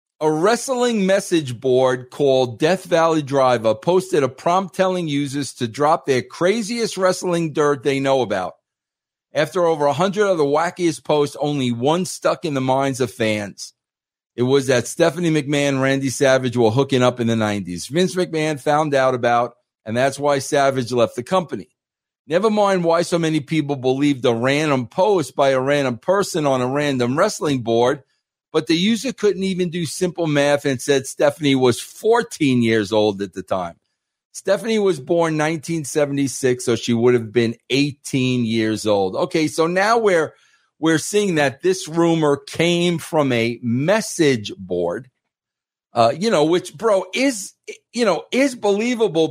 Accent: American